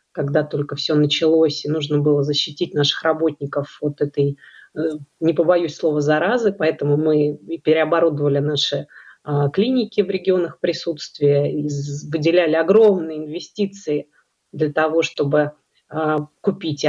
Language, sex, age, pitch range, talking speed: Russian, female, 30-49, 150-185 Hz, 110 wpm